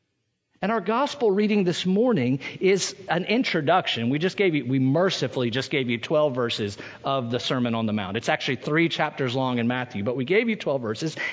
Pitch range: 140-205 Hz